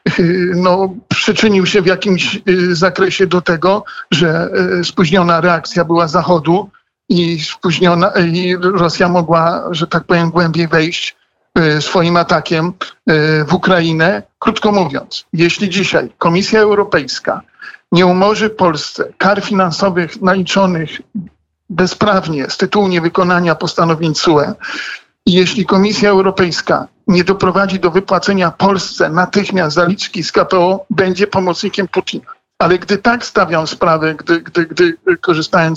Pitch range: 165-190 Hz